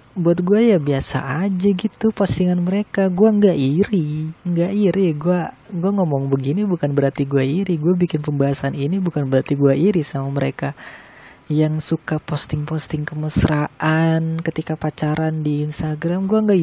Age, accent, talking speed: 20-39, native, 150 wpm